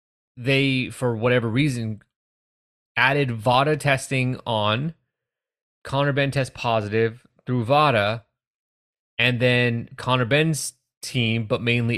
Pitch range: 110-135 Hz